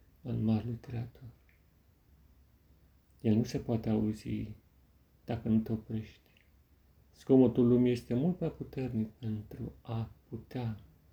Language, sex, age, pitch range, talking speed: Romanian, male, 40-59, 80-120 Hz, 115 wpm